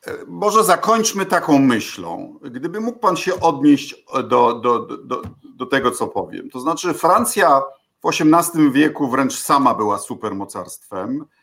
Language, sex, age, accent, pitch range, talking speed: Polish, male, 50-69, native, 120-190 Hz, 140 wpm